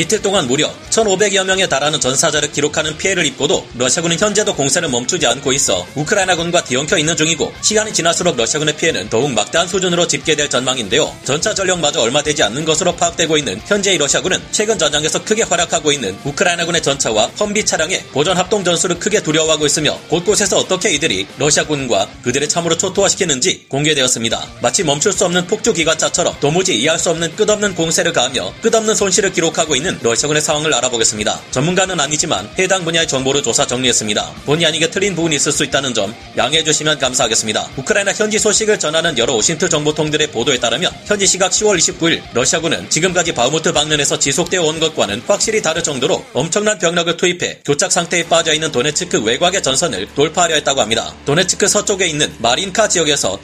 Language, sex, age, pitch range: Korean, male, 30-49, 150-190 Hz